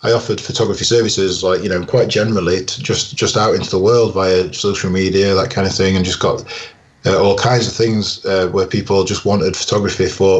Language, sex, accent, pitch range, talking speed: English, male, British, 95-115 Hz, 220 wpm